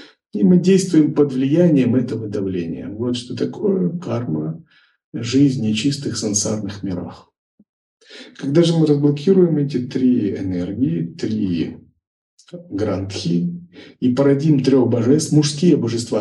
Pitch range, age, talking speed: 105-150 Hz, 50-69, 115 wpm